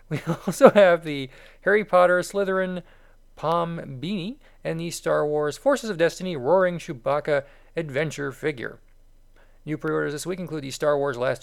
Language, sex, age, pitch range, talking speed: English, male, 40-59, 135-175 Hz, 150 wpm